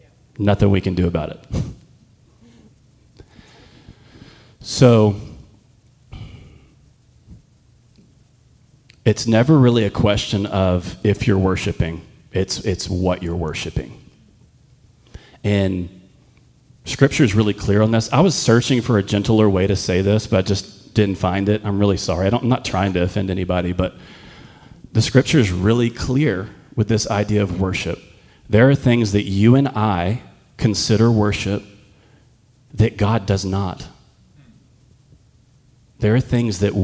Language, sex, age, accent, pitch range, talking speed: English, male, 30-49, American, 100-120 Hz, 135 wpm